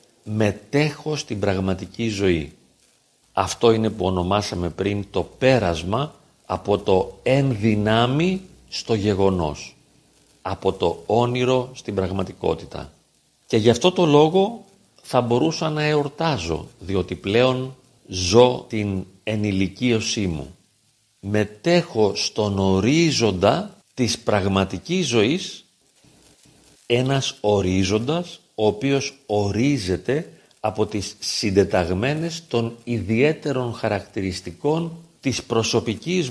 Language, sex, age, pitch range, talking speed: Greek, male, 50-69, 100-140 Hz, 90 wpm